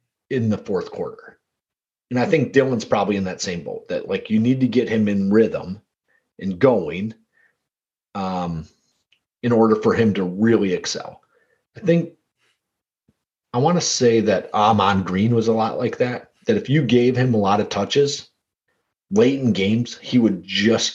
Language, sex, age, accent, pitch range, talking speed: English, male, 30-49, American, 105-140 Hz, 175 wpm